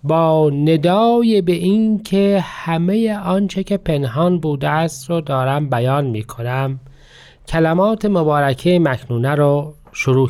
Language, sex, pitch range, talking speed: Persian, male, 140-185 Hz, 115 wpm